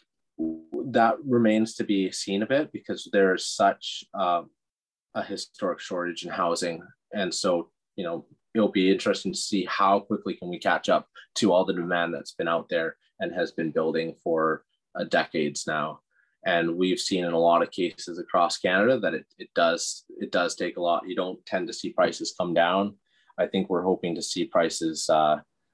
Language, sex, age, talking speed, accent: English, male, 30-49, 190 wpm, American